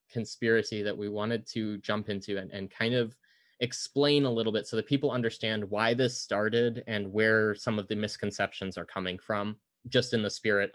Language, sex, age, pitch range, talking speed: English, male, 20-39, 105-125 Hz, 195 wpm